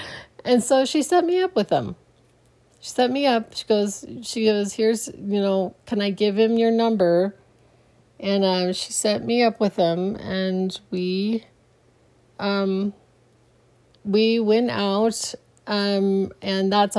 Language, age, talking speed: English, 40-59, 150 wpm